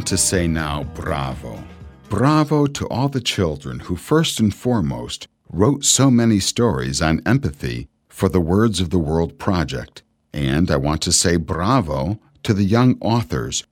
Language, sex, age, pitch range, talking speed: English, male, 60-79, 75-110 Hz, 160 wpm